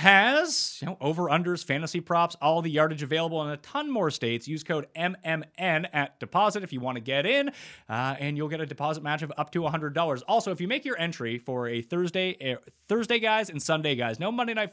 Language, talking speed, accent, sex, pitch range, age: English, 220 wpm, American, male, 130-175 Hz, 30-49